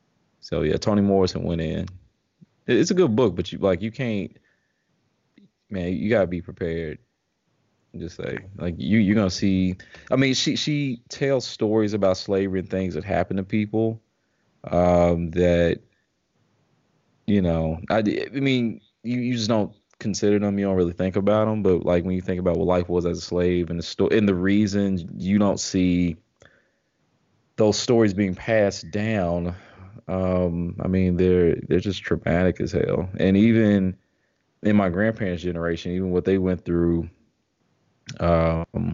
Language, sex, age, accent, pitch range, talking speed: English, male, 20-39, American, 85-105 Hz, 165 wpm